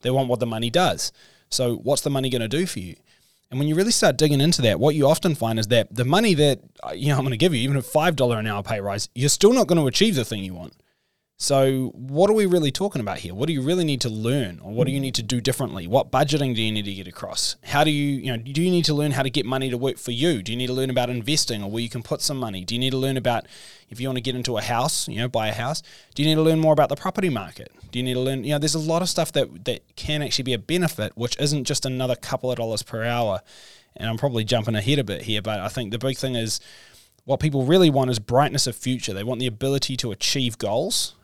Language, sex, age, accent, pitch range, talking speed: English, male, 20-39, Australian, 115-145 Hz, 300 wpm